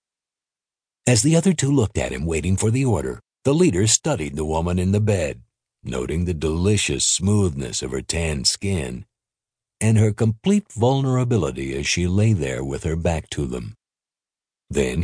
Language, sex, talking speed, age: English, male, 165 wpm, 60-79